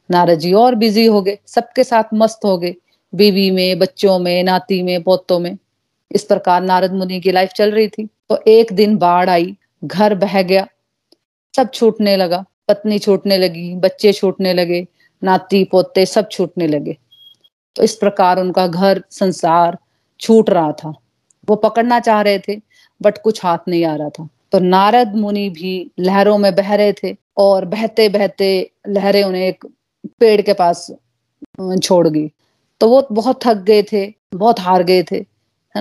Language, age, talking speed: Hindi, 40-59, 135 wpm